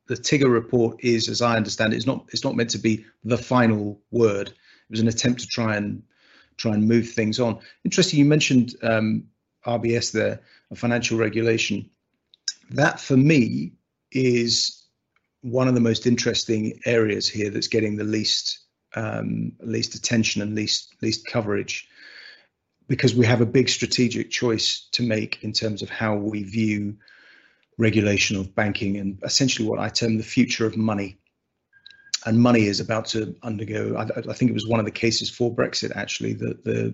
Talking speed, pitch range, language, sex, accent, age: 175 wpm, 110-120 Hz, English, male, British, 30-49